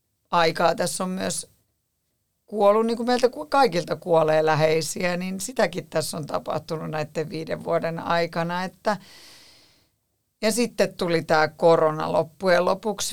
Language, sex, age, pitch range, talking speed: Finnish, female, 50-69, 160-215 Hz, 130 wpm